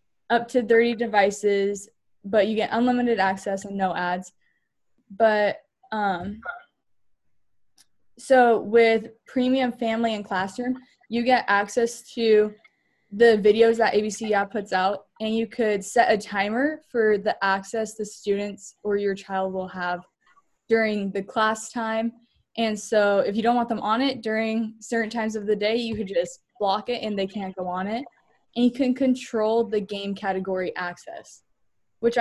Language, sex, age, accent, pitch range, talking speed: English, female, 10-29, American, 205-240 Hz, 160 wpm